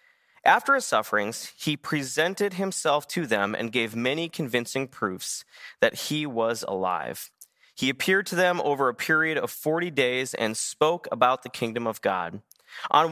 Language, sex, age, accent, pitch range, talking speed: English, male, 30-49, American, 120-165 Hz, 160 wpm